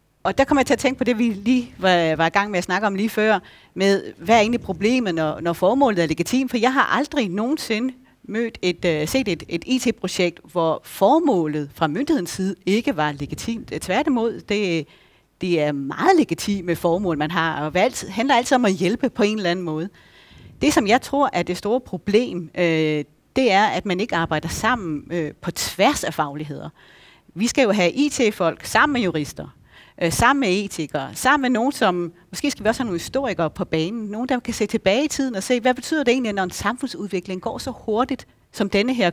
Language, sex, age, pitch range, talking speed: Danish, female, 40-59, 175-255 Hz, 210 wpm